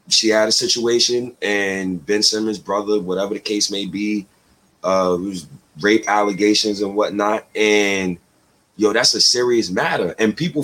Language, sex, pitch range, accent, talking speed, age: English, male, 105-175 Hz, American, 150 wpm, 30-49